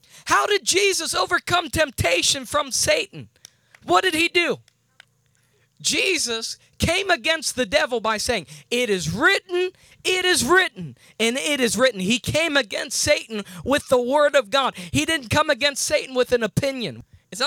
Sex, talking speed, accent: male, 160 wpm, American